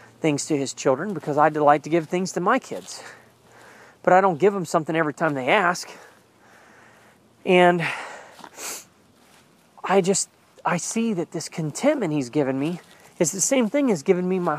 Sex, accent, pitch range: male, American, 145-190 Hz